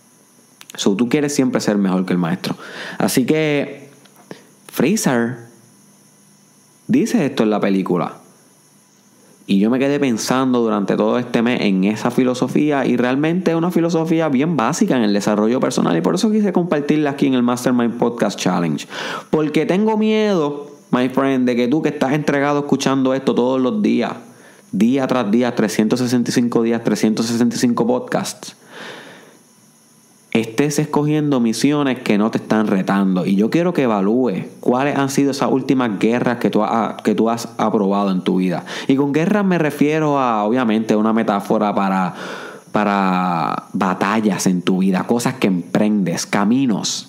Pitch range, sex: 105-145 Hz, male